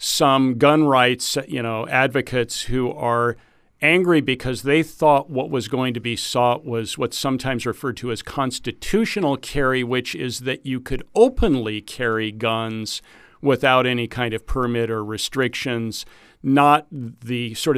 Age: 50-69